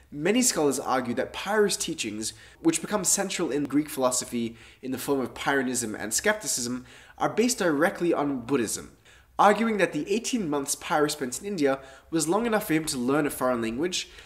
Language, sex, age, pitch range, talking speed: English, male, 20-39, 120-185 Hz, 180 wpm